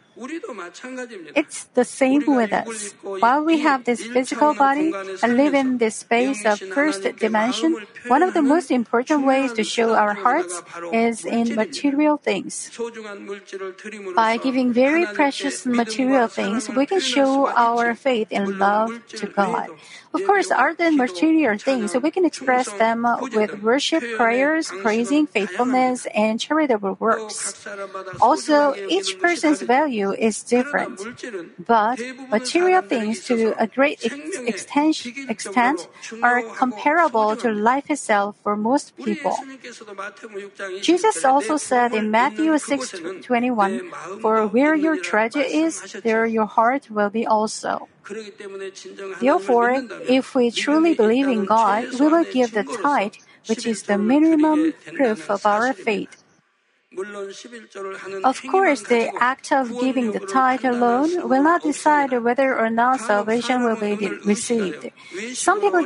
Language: Korean